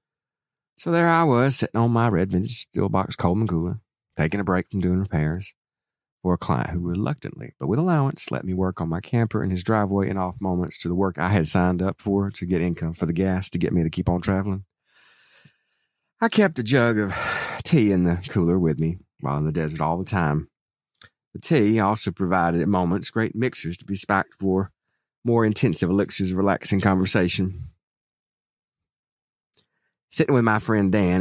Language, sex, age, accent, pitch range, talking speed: English, male, 40-59, American, 85-115 Hz, 195 wpm